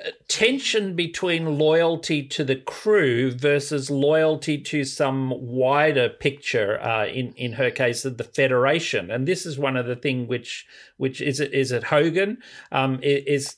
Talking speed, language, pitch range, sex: 160 wpm, English, 125-170 Hz, male